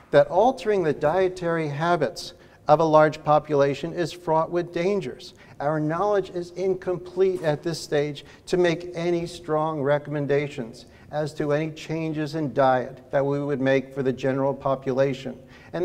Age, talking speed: 60-79, 150 wpm